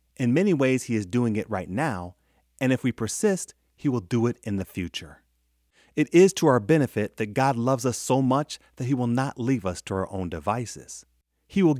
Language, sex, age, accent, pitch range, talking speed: English, male, 30-49, American, 90-135 Hz, 220 wpm